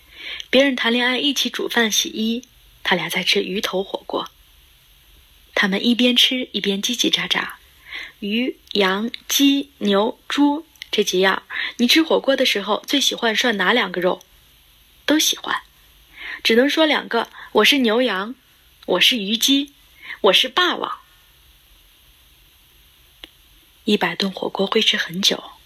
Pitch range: 180-245 Hz